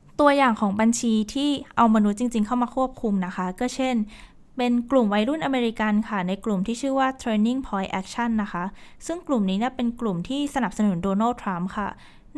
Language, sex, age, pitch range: Thai, female, 20-39, 195-250 Hz